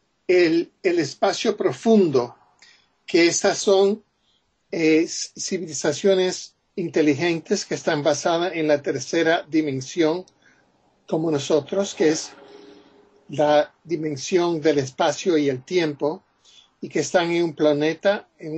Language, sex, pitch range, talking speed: Spanish, male, 150-195 Hz, 115 wpm